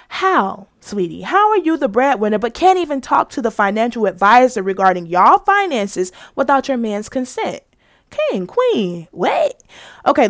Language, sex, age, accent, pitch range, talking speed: English, female, 20-39, American, 195-315 Hz, 150 wpm